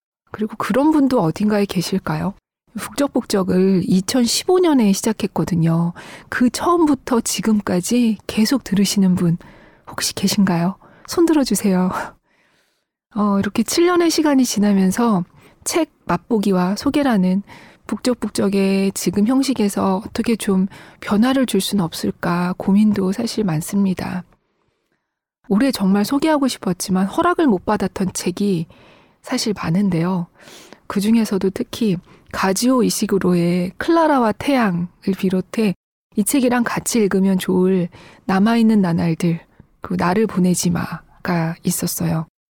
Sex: female